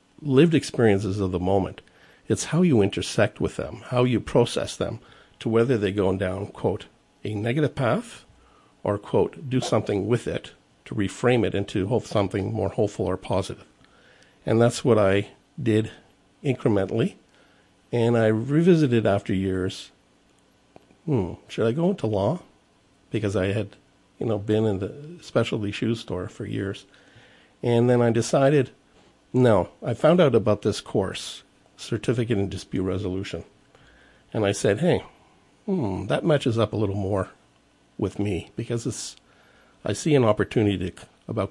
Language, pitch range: English, 100-120 Hz